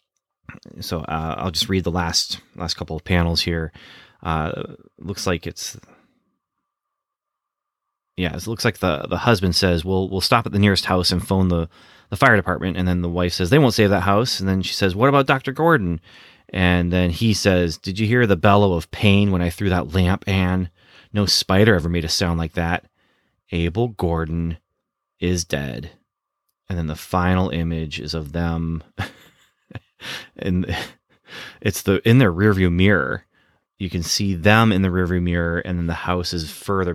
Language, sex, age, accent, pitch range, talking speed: English, male, 30-49, American, 85-100 Hz, 185 wpm